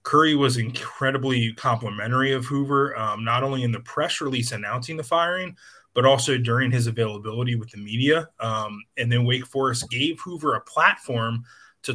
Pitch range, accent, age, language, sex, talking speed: 115-140 Hz, American, 20-39, English, male, 170 wpm